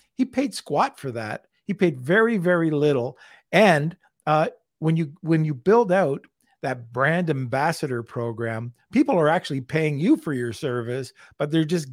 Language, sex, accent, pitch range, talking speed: English, male, American, 135-185 Hz, 165 wpm